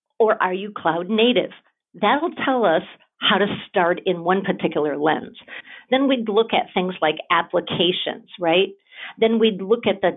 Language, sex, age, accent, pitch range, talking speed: English, female, 50-69, American, 175-225 Hz, 165 wpm